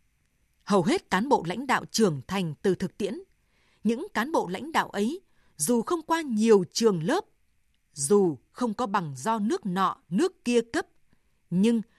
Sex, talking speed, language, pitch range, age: female, 170 wpm, Vietnamese, 195-260 Hz, 20-39